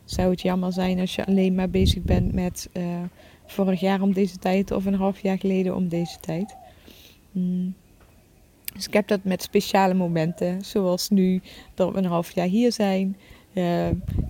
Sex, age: female, 20-39